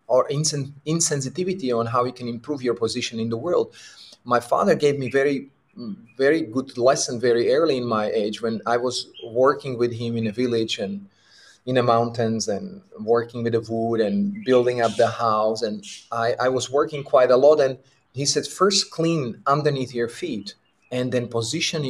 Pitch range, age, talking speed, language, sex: 120-150 Hz, 30-49, 185 wpm, English, male